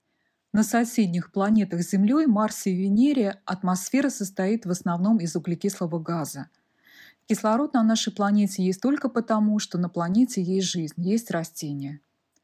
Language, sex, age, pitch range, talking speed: Russian, female, 20-39, 175-225 Hz, 140 wpm